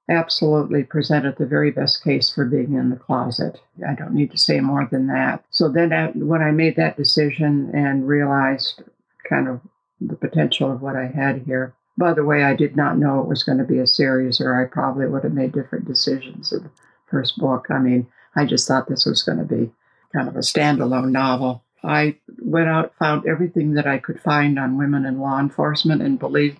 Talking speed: 210 wpm